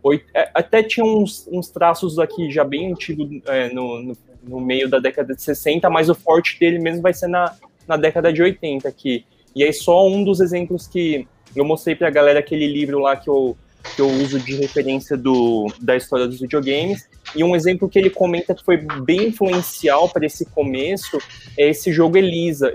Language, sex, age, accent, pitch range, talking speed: Portuguese, male, 20-39, Brazilian, 145-180 Hz, 185 wpm